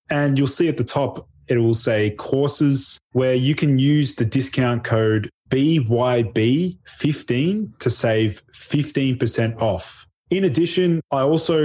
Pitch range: 110-135 Hz